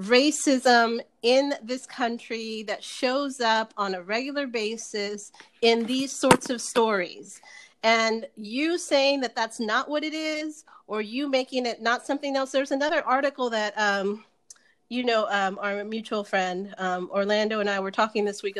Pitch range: 200-250 Hz